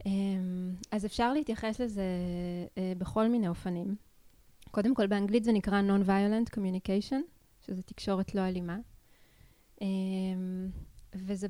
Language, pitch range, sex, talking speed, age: Hebrew, 185-210 Hz, female, 100 wpm, 20-39